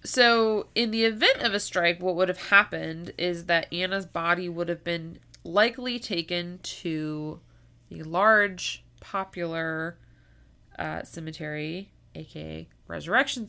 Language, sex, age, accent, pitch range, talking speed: English, female, 20-39, American, 155-185 Hz, 125 wpm